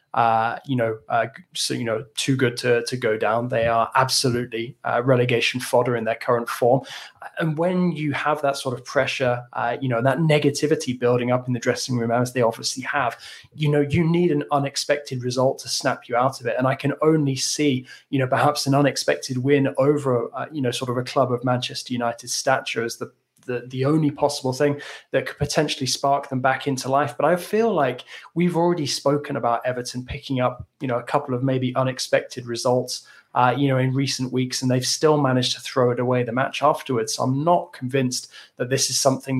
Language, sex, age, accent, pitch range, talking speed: English, male, 20-39, British, 125-140 Hz, 215 wpm